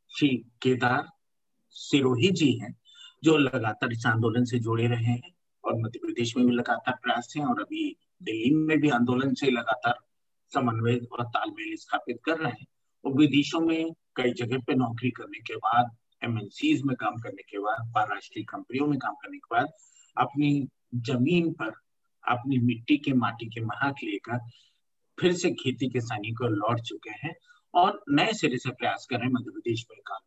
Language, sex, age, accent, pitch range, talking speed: Hindi, male, 50-69, native, 120-185 Hz, 170 wpm